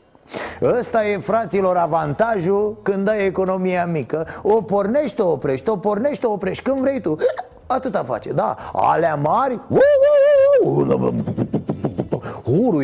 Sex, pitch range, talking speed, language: male, 180-290 Hz, 115 wpm, Romanian